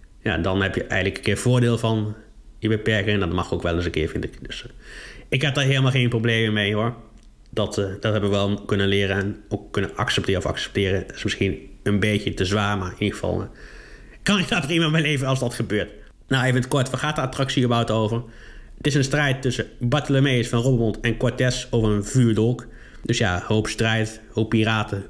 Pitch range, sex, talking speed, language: 100-130 Hz, male, 220 wpm, Dutch